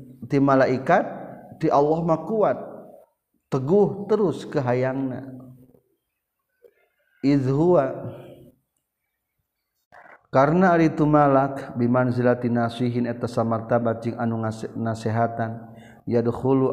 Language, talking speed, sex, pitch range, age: Indonesian, 85 wpm, male, 110-130 Hz, 50-69